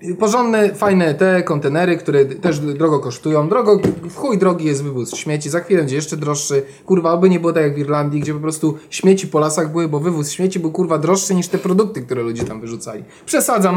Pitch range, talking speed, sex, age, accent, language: 155-200 Hz, 210 wpm, male, 20-39, native, Polish